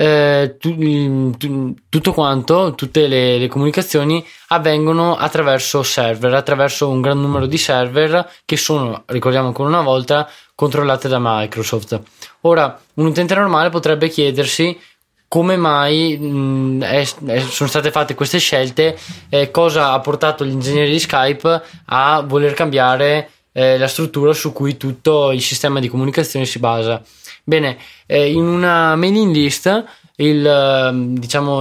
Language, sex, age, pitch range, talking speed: Italian, male, 20-39, 130-160 Hz, 140 wpm